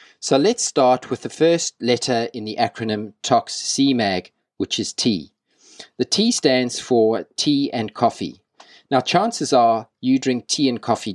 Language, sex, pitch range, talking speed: English, male, 105-140 Hz, 155 wpm